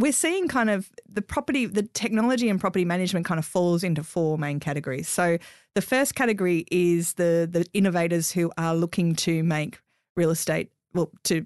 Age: 30-49